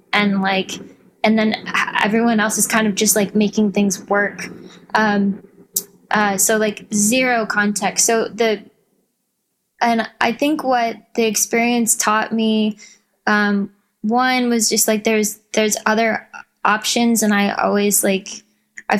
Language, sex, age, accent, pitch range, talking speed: English, female, 10-29, American, 195-220 Hz, 140 wpm